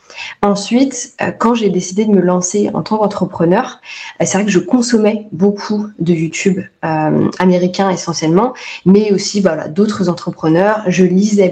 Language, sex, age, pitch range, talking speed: French, female, 20-39, 180-215 Hz, 140 wpm